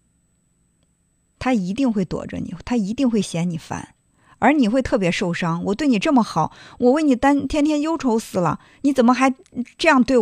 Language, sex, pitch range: Chinese, female, 185-265 Hz